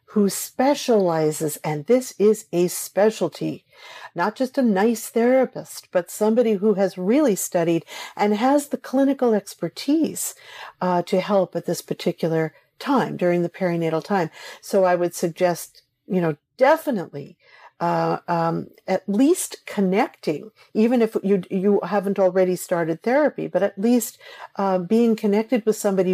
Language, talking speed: English, 140 wpm